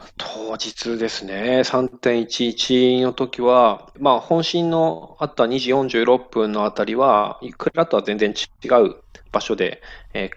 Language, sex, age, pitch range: Japanese, male, 20-39, 110-135 Hz